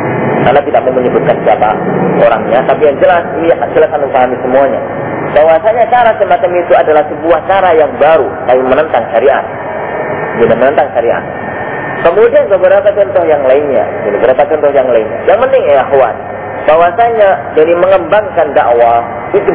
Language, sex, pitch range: Indonesian, male, 145-210 Hz